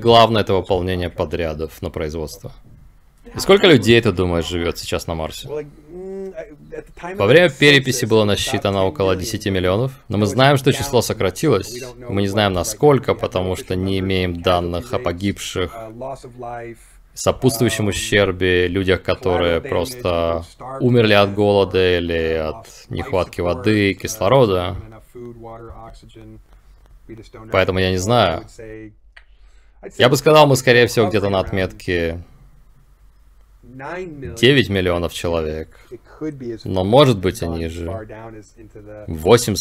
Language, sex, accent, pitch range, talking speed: Russian, male, native, 90-120 Hz, 115 wpm